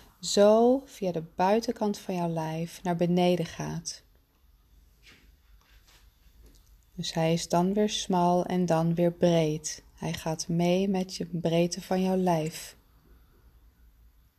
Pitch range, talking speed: 155-195 Hz, 120 wpm